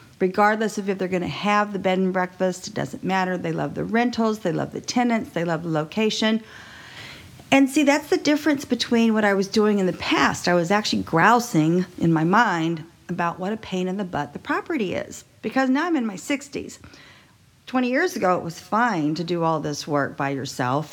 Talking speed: 215 wpm